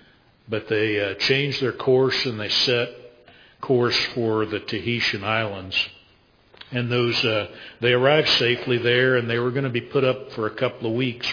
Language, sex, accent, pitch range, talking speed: English, male, American, 115-135 Hz, 180 wpm